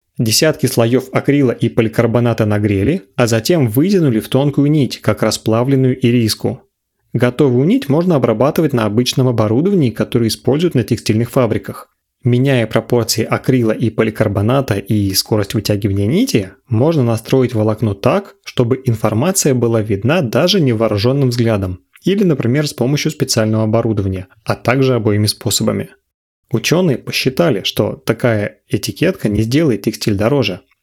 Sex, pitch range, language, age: male, 110-135 Hz, Russian, 30-49